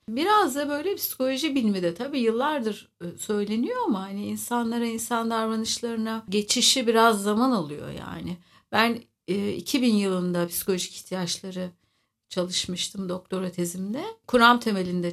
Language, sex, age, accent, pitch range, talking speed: Turkish, female, 60-79, native, 175-230 Hz, 115 wpm